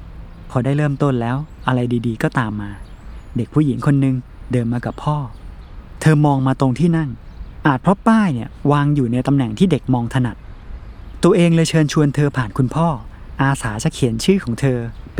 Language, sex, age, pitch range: Thai, male, 20-39, 115-145 Hz